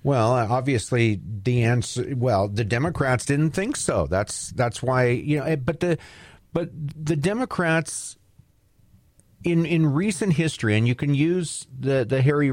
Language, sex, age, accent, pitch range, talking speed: English, male, 40-59, American, 110-150 Hz, 150 wpm